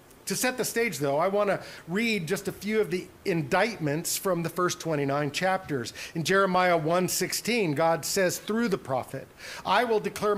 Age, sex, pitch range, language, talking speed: 50-69, male, 135-185 Hz, English, 180 wpm